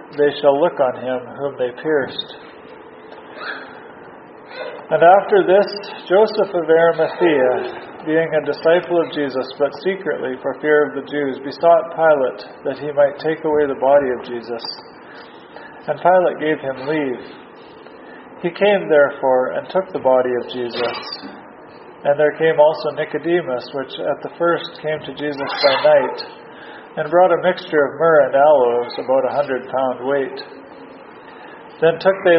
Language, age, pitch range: English, 40-59, 135-170 Hz